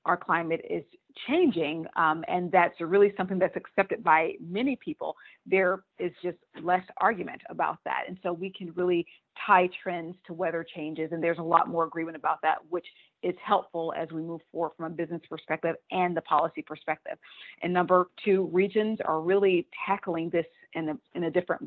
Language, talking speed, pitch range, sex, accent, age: English, 185 wpm, 165-185 Hz, female, American, 30-49